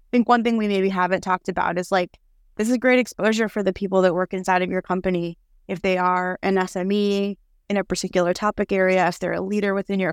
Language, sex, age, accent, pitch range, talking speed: English, female, 20-39, American, 180-220 Hz, 245 wpm